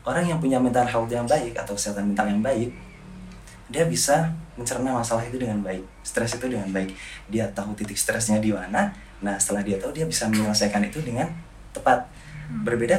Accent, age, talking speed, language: native, 20-39, 185 wpm, Indonesian